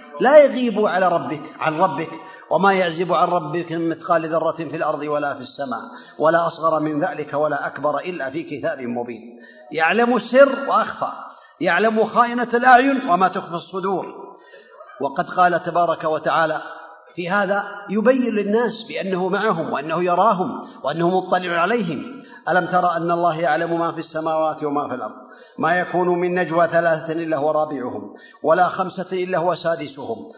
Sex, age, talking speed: male, 50-69, 150 wpm